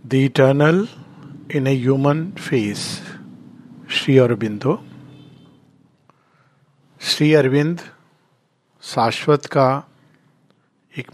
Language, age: Hindi, 50-69